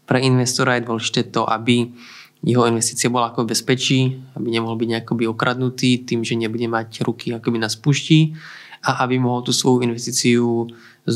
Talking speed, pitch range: 165 wpm, 115-125 Hz